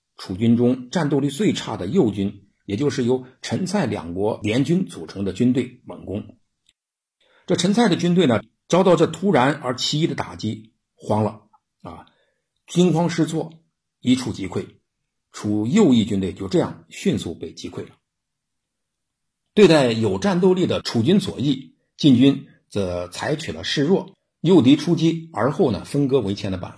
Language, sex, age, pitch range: Chinese, male, 50-69, 105-160 Hz